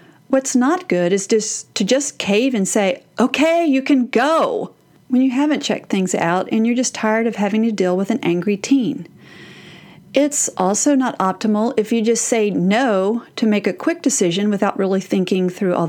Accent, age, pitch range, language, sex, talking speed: American, 40-59, 185-245 Hz, English, female, 195 wpm